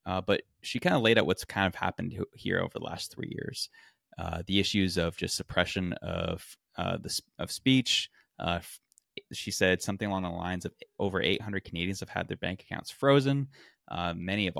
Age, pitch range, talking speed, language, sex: 20-39, 85-100 Hz, 195 wpm, English, male